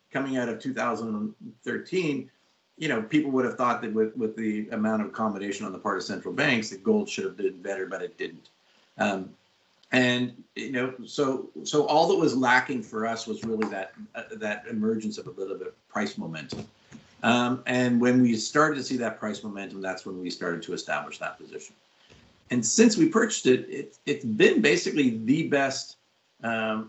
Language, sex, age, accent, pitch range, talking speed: English, male, 50-69, American, 110-145 Hz, 195 wpm